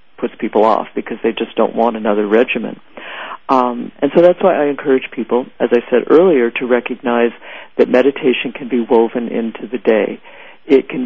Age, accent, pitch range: 50-69, American, 120-140 Hz